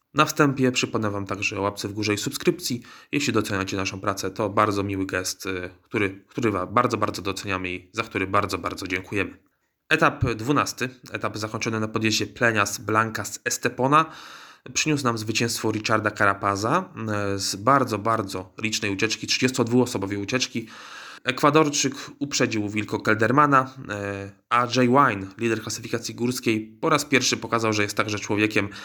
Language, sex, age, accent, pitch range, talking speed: Polish, male, 20-39, native, 100-125 Hz, 145 wpm